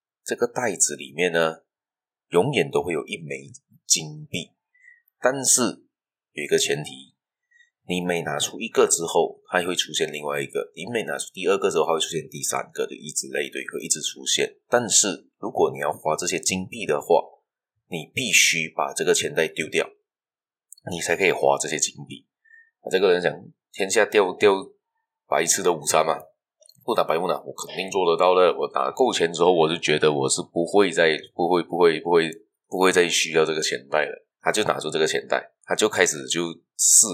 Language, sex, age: Chinese, male, 30-49